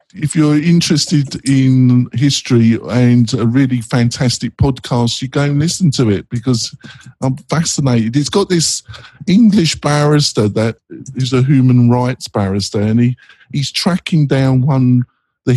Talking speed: 145 wpm